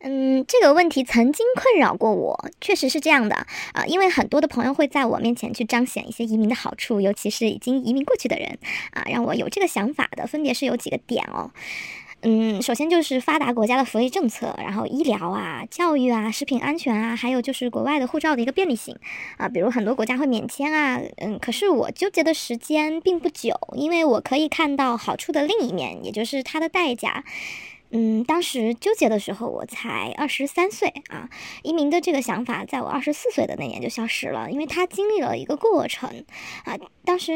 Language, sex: Chinese, male